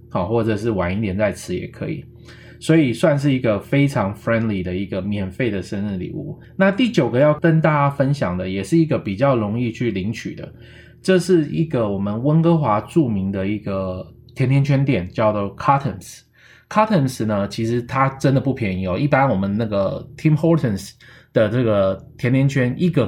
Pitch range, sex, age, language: 100-140 Hz, male, 20-39, Chinese